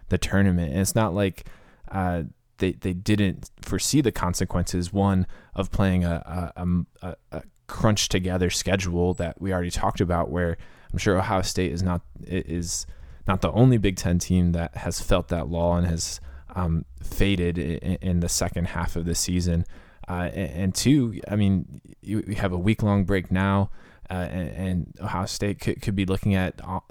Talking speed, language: 180 wpm, English